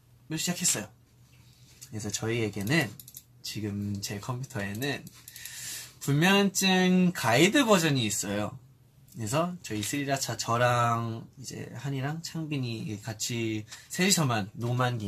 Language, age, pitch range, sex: Korean, 20-39, 110-135 Hz, male